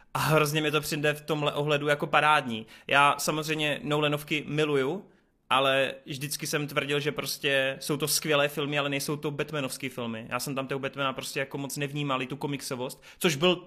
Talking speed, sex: 180 wpm, male